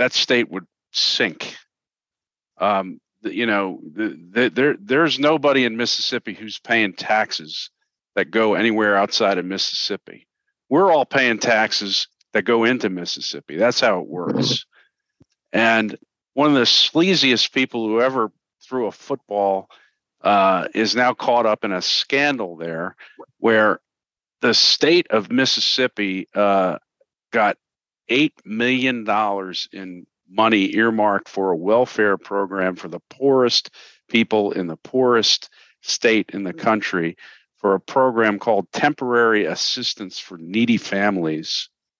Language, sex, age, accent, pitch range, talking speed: English, male, 50-69, American, 95-125 Hz, 130 wpm